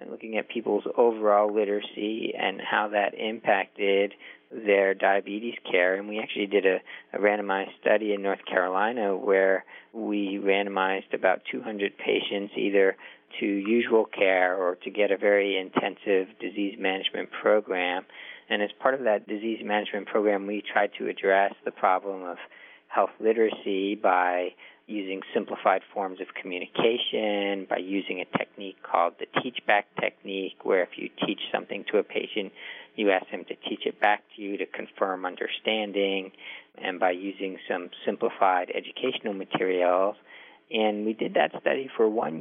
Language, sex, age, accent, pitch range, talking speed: English, male, 50-69, American, 95-110 Hz, 155 wpm